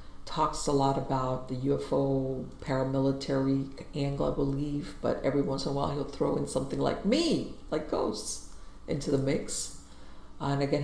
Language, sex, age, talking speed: English, female, 50-69, 160 wpm